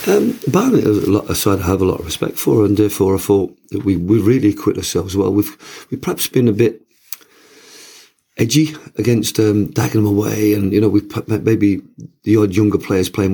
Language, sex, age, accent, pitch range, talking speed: English, male, 40-59, British, 90-105 Hz, 205 wpm